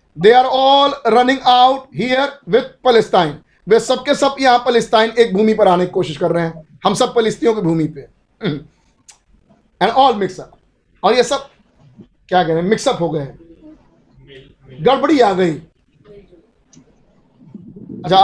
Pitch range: 180-245 Hz